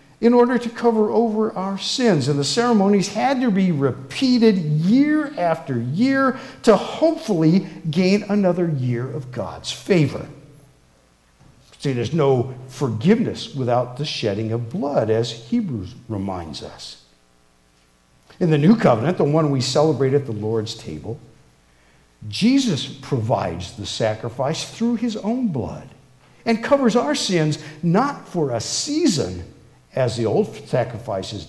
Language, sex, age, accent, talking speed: English, male, 50-69, American, 135 wpm